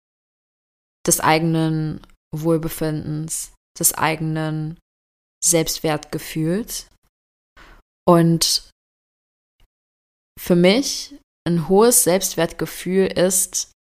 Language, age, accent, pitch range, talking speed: German, 20-39, German, 100-170 Hz, 55 wpm